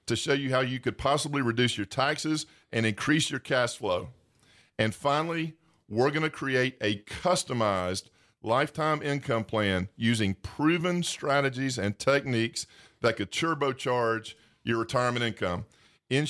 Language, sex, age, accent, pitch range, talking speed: English, male, 40-59, American, 120-155 Hz, 140 wpm